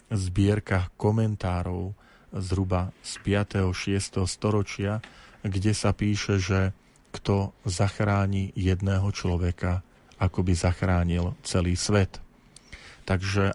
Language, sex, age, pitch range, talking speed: Slovak, male, 40-59, 95-105 Hz, 95 wpm